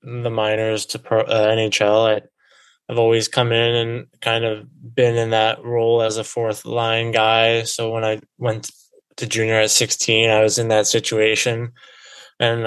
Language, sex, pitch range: English, male, 110-120 Hz